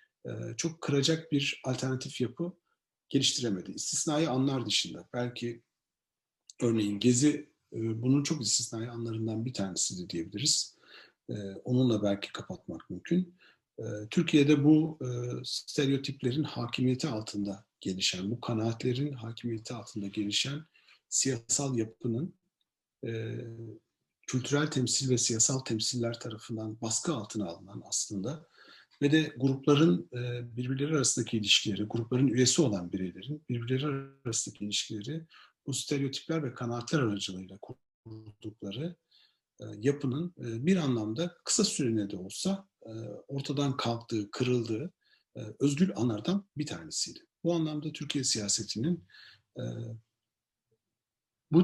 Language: Turkish